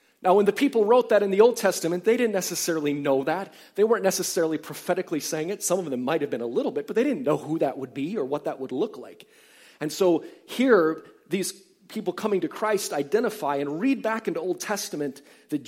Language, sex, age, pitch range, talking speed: English, male, 40-59, 170-215 Hz, 230 wpm